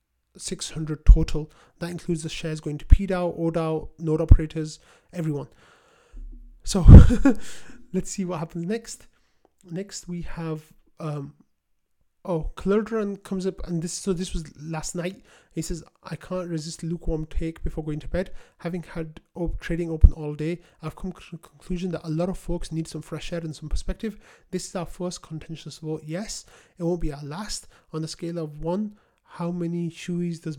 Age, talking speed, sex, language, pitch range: 30-49, 175 wpm, male, English, 155-180 Hz